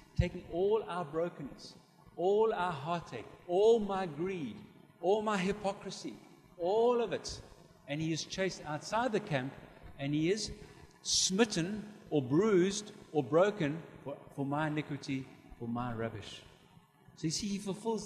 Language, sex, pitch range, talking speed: English, male, 145-195 Hz, 145 wpm